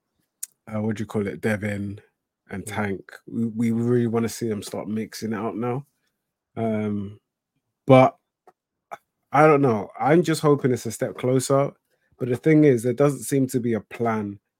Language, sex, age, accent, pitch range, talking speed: English, male, 20-39, British, 110-130 Hz, 175 wpm